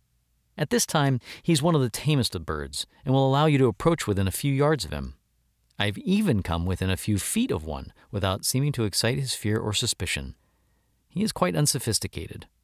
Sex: male